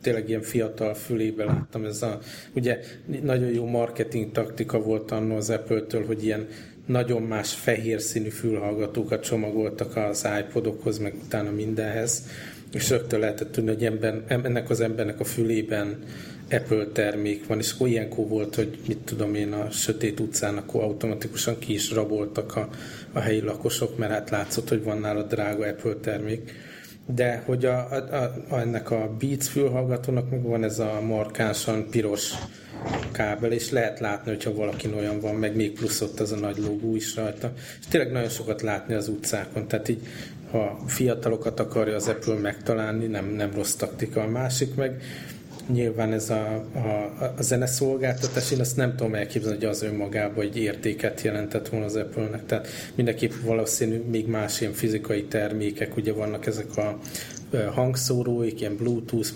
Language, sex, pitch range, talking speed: English, male, 105-115 Hz, 160 wpm